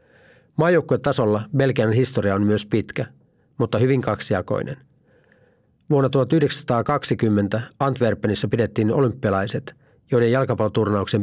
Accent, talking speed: native, 90 wpm